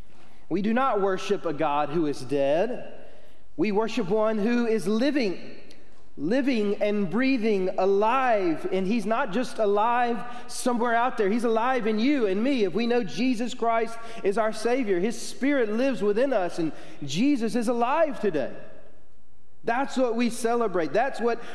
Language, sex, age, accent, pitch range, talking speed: English, male, 30-49, American, 180-240 Hz, 160 wpm